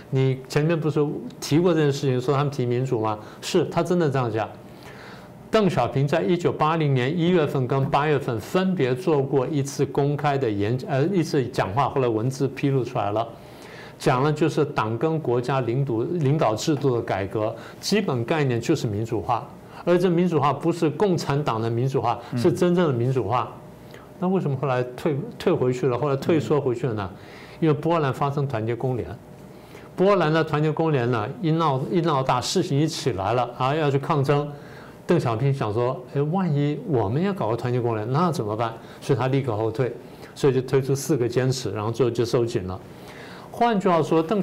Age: 50-69